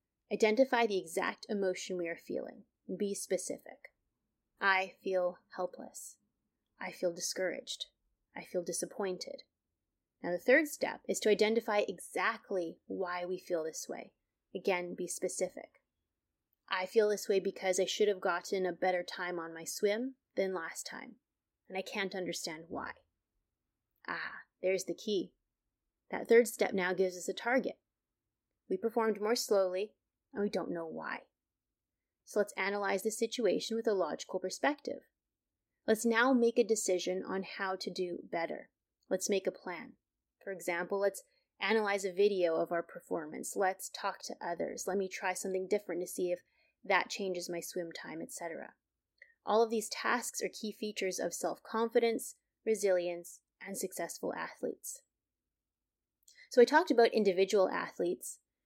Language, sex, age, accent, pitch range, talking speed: English, female, 30-49, American, 180-225 Hz, 150 wpm